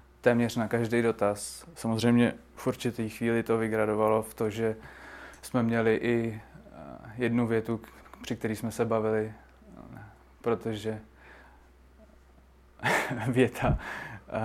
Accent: native